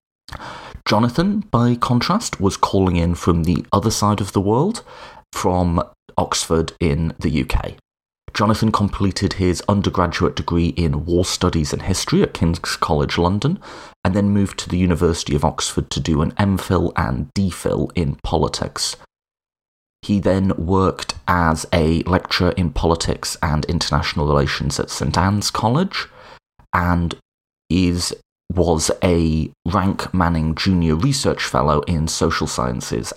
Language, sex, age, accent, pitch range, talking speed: English, male, 30-49, British, 80-105 Hz, 135 wpm